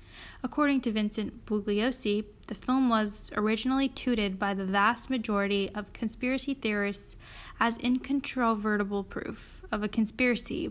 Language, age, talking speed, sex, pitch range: English, 10-29, 125 wpm, female, 205-245 Hz